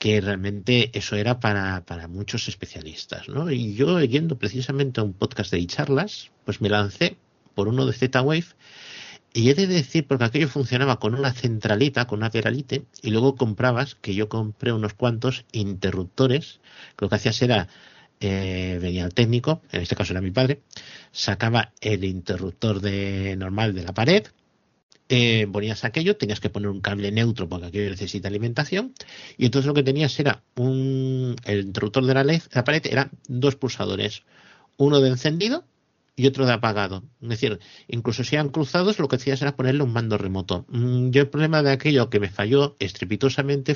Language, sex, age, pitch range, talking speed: Spanish, male, 50-69, 105-135 Hz, 180 wpm